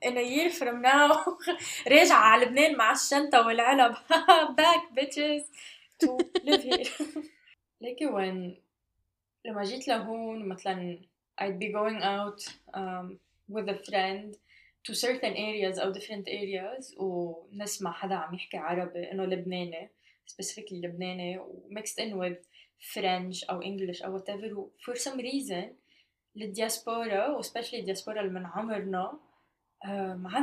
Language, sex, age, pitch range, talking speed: Arabic, female, 10-29, 195-270 Hz, 110 wpm